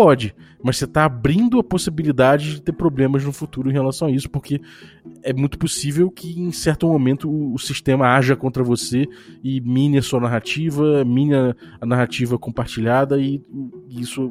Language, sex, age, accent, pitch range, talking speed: Portuguese, male, 20-39, Brazilian, 120-145 Hz, 170 wpm